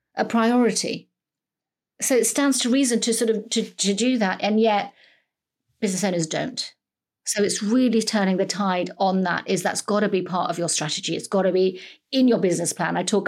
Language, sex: English, female